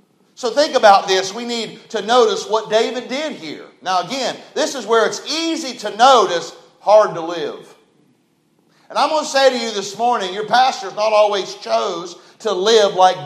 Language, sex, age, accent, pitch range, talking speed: English, male, 40-59, American, 185-245 Hz, 190 wpm